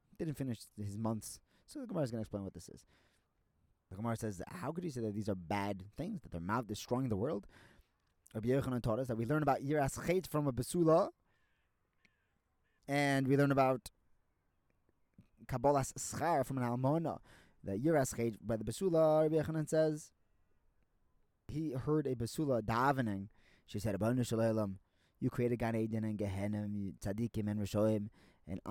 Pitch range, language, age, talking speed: 105-145 Hz, English, 20-39, 160 wpm